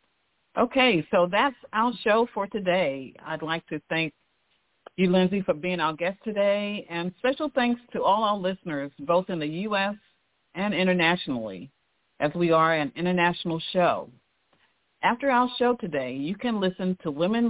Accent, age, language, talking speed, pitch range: American, 50-69, English, 160 wpm, 150-200 Hz